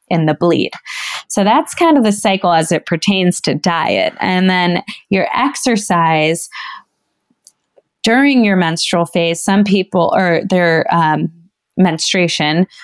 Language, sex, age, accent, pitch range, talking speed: English, female, 20-39, American, 165-190 Hz, 130 wpm